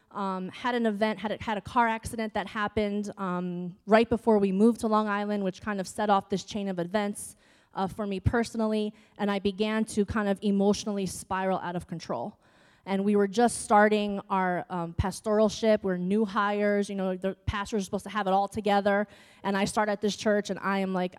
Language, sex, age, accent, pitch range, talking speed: English, female, 20-39, American, 185-215 Hz, 220 wpm